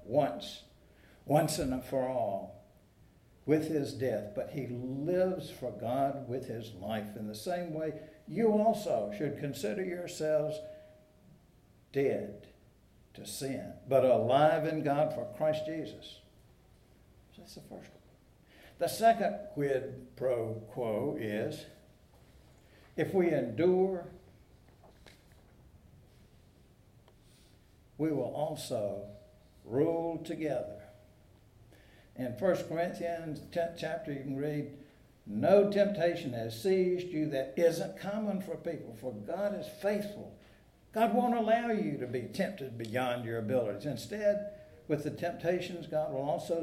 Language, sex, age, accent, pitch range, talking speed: English, male, 60-79, American, 115-170 Hz, 120 wpm